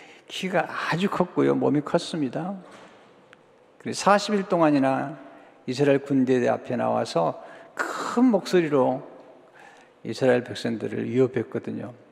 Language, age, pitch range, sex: Korean, 50-69, 135-180 Hz, male